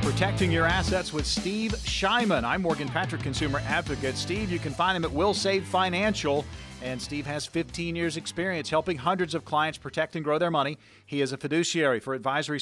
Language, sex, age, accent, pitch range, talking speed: English, male, 40-59, American, 135-170 Hz, 195 wpm